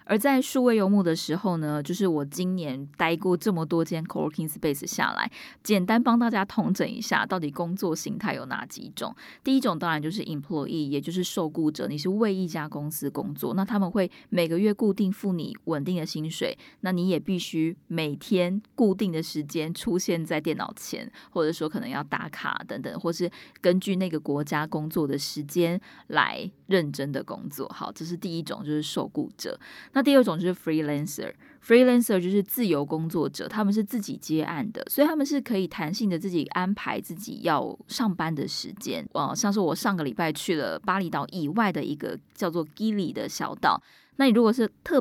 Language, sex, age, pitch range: Chinese, female, 20-39, 160-210 Hz